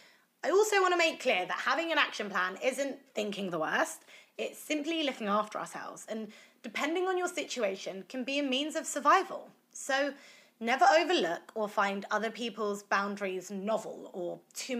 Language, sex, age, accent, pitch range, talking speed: English, female, 20-39, British, 210-310 Hz, 165 wpm